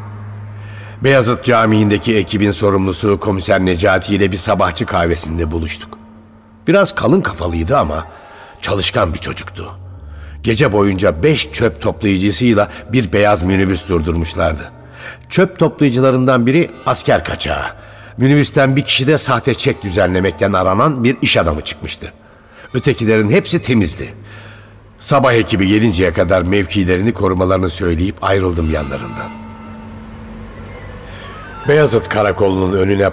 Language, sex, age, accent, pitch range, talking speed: Turkish, male, 60-79, native, 95-115 Hz, 105 wpm